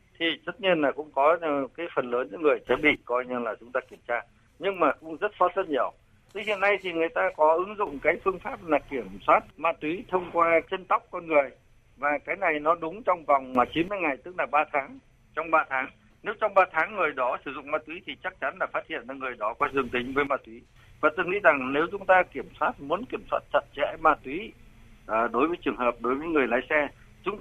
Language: Vietnamese